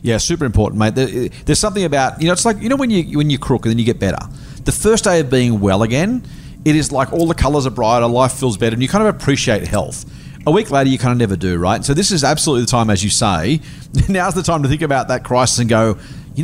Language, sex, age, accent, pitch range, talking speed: English, male, 40-59, Australian, 120-155 Hz, 280 wpm